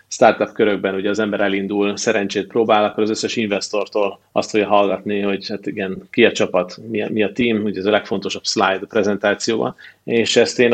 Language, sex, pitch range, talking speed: Hungarian, male, 100-110 Hz, 200 wpm